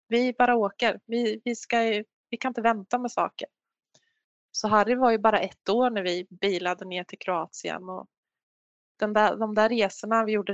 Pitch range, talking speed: 195-240 Hz, 195 wpm